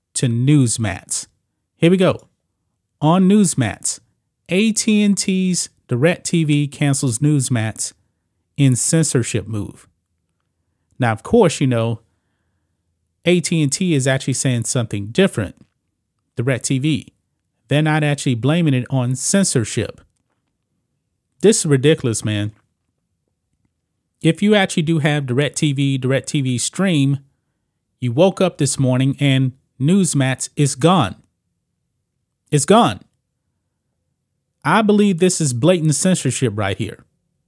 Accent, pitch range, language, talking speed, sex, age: American, 115-160 Hz, English, 110 wpm, male, 30-49